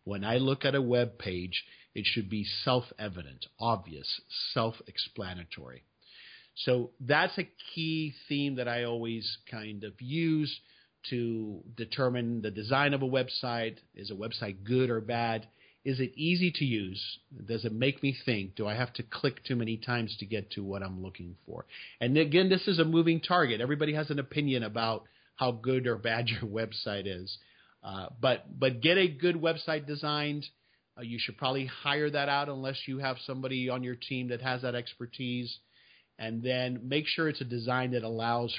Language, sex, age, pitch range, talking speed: English, male, 50-69, 110-135 Hz, 180 wpm